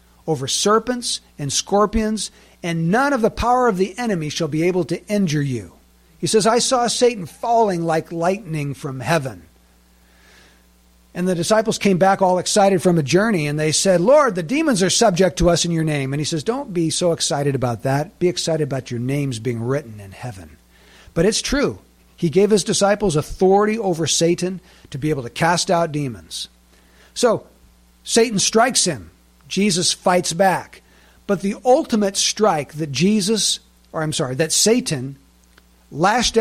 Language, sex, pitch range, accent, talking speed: English, male, 125-195 Hz, American, 175 wpm